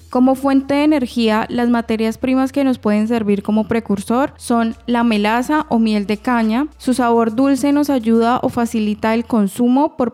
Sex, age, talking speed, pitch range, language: female, 10-29, 180 wpm, 215-255 Hz, Spanish